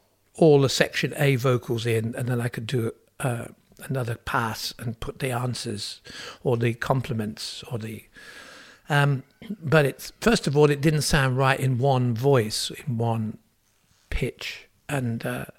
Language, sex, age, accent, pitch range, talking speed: English, male, 60-79, British, 115-140 Hz, 155 wpm